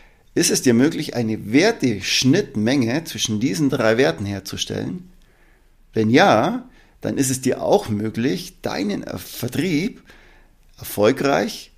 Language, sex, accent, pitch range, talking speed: German, male, German, 105-135 Hz, 110 wpm